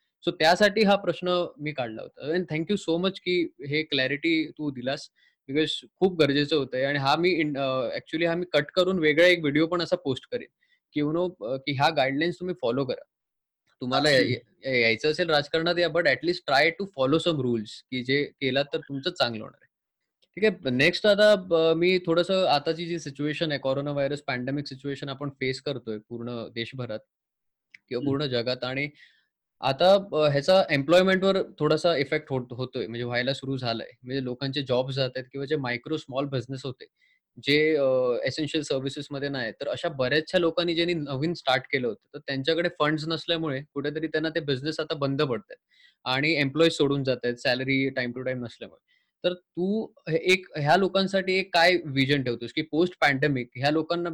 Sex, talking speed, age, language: male, 180 wpm, 20-39, Marathi